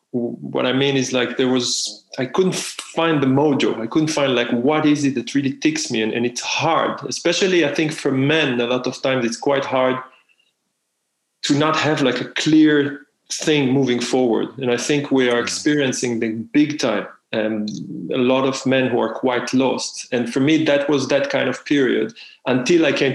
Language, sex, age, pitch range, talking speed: English, male, 30-49, 125-145 Hz, 200 wpm